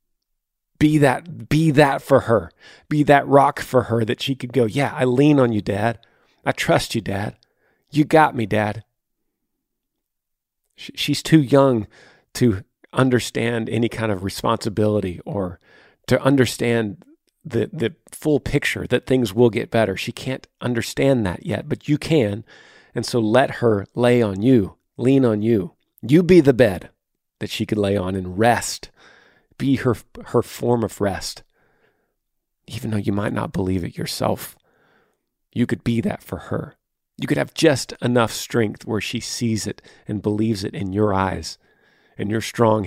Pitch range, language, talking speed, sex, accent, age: 105-130 Hz, English, 165 wpm, male, American, 40-59